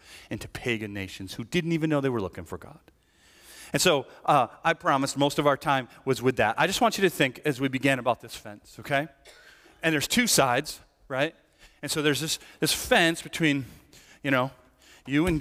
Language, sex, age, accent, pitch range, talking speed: English, male, 40-59, American, 110-150 Hz, 220 wpm